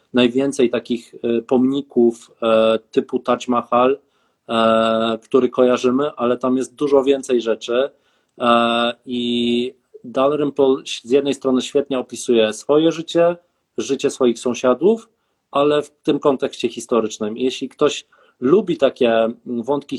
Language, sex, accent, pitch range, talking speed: Polish, male, native, 120-140 Hz, 110 wpm